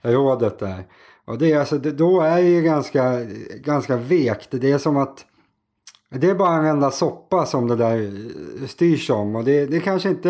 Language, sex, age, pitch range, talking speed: Swedish, male, 30-49, 110-145 Hz, 185 wpm